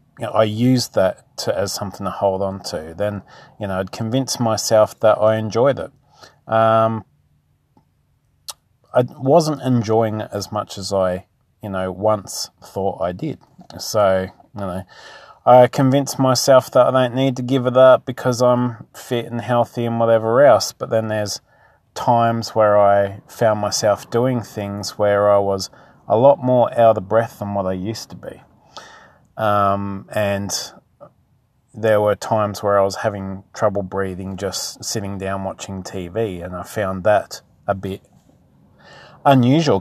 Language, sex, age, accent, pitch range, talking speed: English, male, 30-49, Australian, 100-125 Hz, 155 wpm